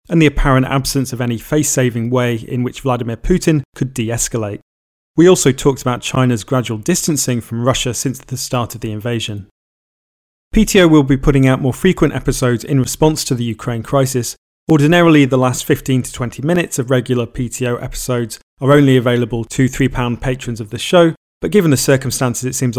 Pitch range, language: 120-145 Hz, English